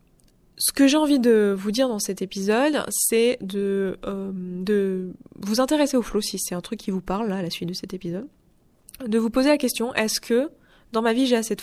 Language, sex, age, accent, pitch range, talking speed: French, female, 20-39, French, 190-240 Hz, 230 wpm